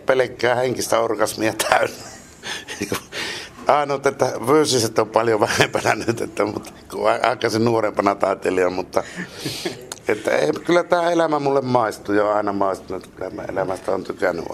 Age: 60-79